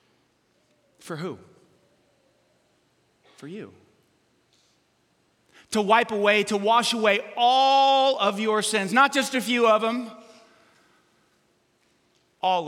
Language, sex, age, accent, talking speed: English, male, 30-49, American, 100 wpm